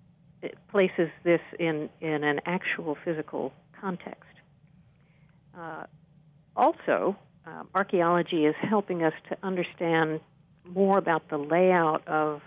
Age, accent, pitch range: 50-69, American, 155-180 Hz